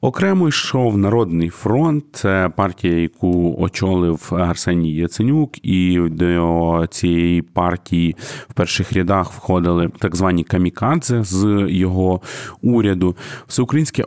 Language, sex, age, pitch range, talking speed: Ukrainian, male, 30-49, 90-110 Hz, 110 wpm